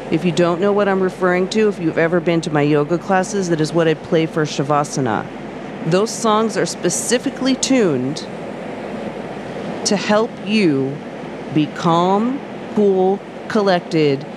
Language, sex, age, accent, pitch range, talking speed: English, female, 40-59, American, 160-195 Hz, 145 wpm